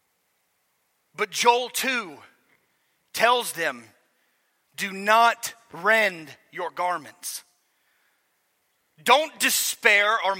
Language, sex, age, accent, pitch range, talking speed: English, male, 40-59, American, 220-270 Hz, 75 wpm